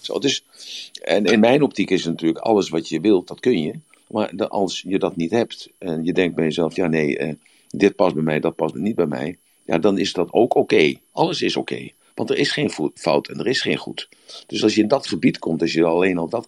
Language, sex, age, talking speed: Dutch, male, 50-69, 240 wpm